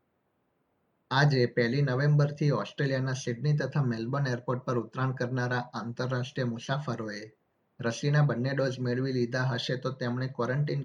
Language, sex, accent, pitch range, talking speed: Gujarati, male, native, 120-135 Hz, 120 wpm